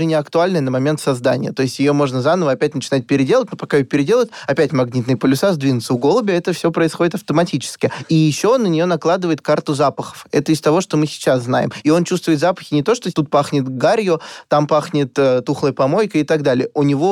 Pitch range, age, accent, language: 135-165 Hz, 20-39, native, Russian